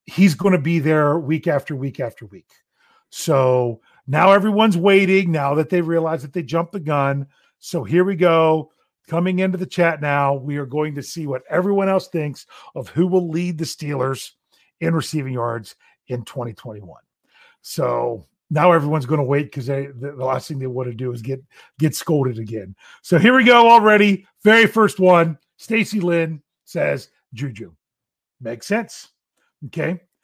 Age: 40-59